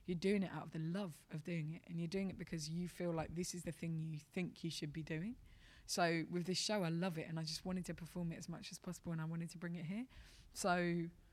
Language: English